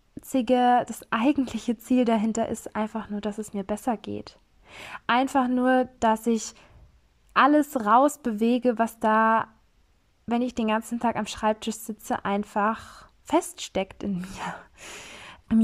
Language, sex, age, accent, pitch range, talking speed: German, female, 20-39, German, 210-250 Hz, 125 wpm